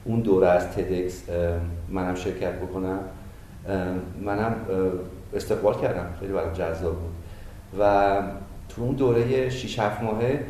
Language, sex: Persian, male